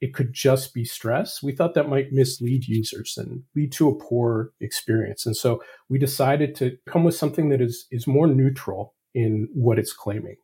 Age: 40-59